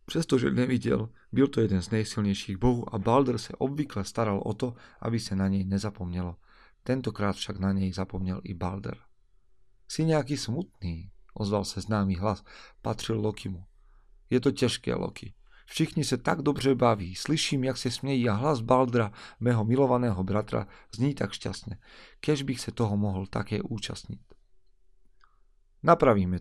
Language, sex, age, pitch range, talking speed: Slovak, male, 40-59, 100-130 Hz, 150 wpm